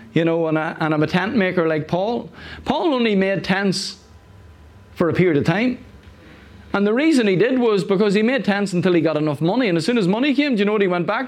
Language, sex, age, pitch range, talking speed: English, male, 30-49, 185-255 Hz, 255 wpm